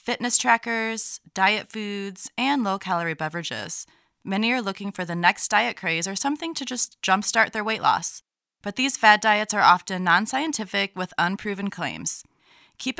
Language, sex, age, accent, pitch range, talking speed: English, female, 20-39, American, 175-230 Hz, 155 wpm